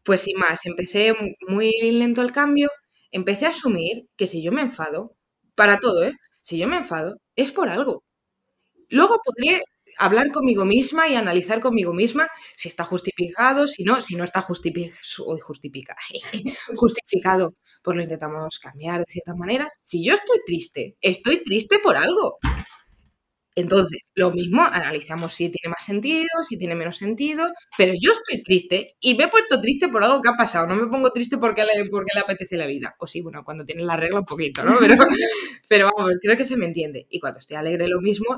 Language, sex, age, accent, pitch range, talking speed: Spanish, female, 20-39, Spanish, 180-265 Hz, 190 wpm